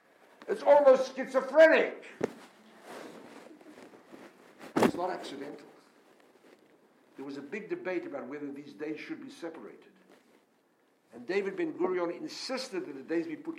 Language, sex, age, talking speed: English, male, 60-79, 120 wpm